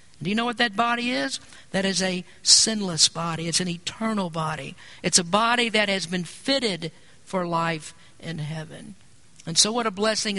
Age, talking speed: 50-69, 185 wpm